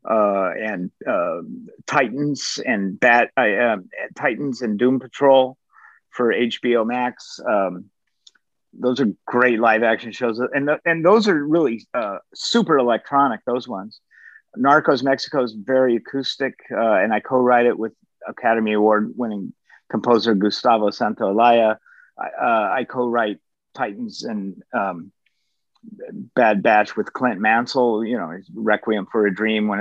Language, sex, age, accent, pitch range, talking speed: English, male, 50-69, American, 110-145 Hz, 135 wpm